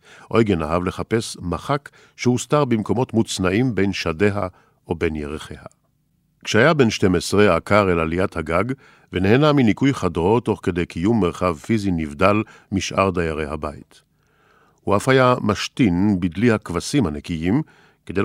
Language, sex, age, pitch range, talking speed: Hebrew, male, 50-69, 90-125 Hz, 130 wpm